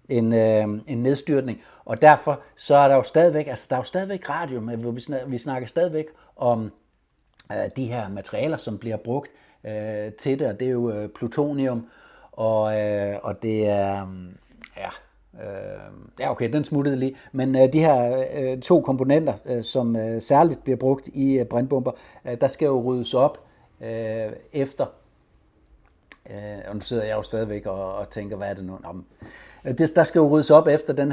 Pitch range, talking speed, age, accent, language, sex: 120-150 Hz, 155 wpm, 60-79, native, Danish, male